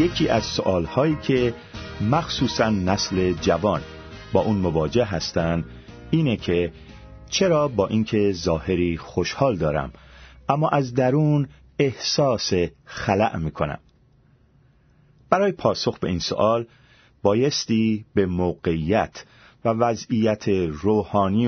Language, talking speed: Persian, 105 wpm